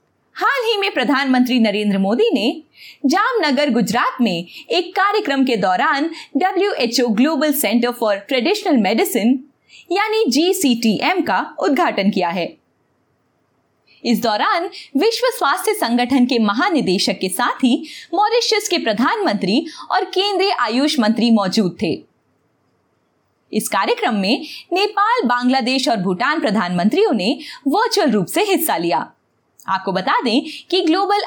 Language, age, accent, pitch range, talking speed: Hindi, 20-39, native, 230-345 Hz, 125 wpm